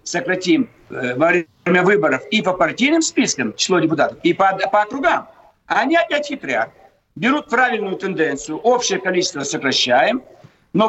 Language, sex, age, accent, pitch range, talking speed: Russian, male, 60-79, native, 185-255 Hz, 130 wpm